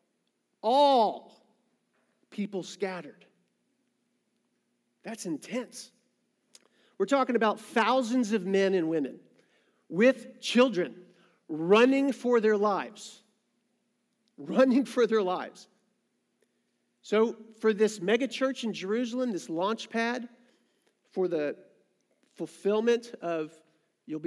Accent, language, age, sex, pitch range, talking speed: American, English, 40-59, male, 165-225 Hz, 95 wpm